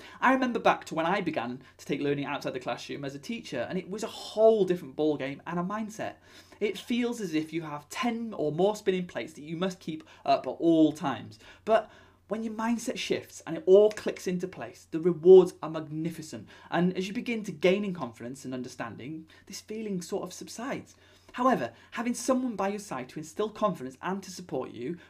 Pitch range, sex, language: 145-200 Hz, male, English